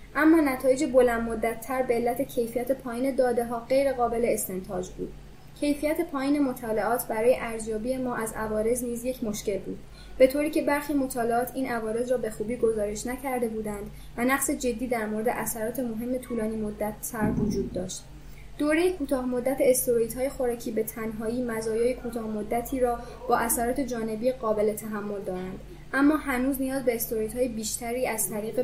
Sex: female